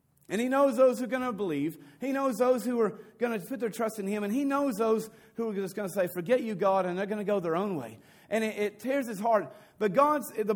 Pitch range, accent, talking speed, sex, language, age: 145-220 Hz, American, 285 wpm, male, English, 40-59